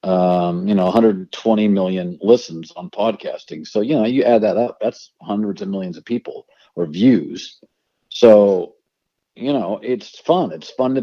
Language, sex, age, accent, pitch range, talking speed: English, male, 50-69, American, 105-155 Hz, 170 wpm